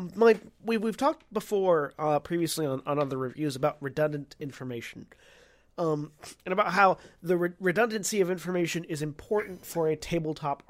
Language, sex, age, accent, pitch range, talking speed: English, male, 30-49, American, 150-200 Hz, 145 wpm